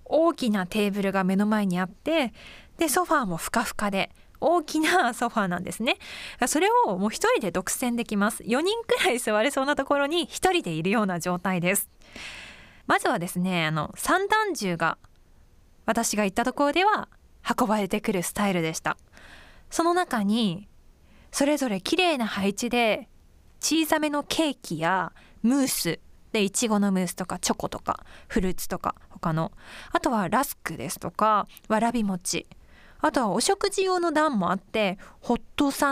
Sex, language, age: female, Japanese, 20-39